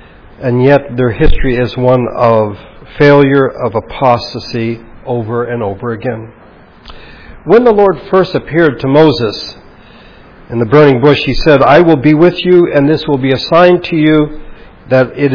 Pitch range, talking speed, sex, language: 120-155 Hz, 165 wpm, male, English